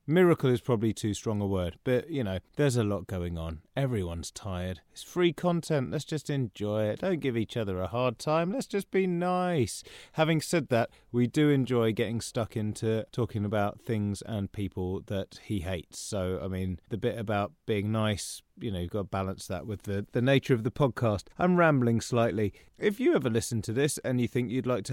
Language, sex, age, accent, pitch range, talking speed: English, male, 30-49, British, 110-140 Hz, 215 wpm